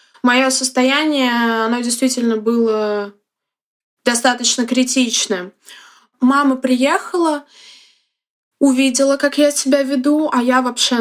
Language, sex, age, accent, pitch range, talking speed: Russian, female, 20-39, native, 235-290 Hz, 95 wpm